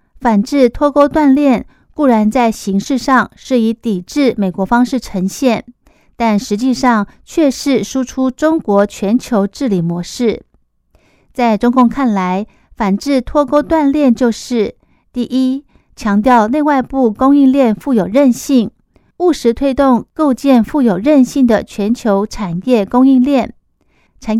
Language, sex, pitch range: Chinese, female, 210-265 Hz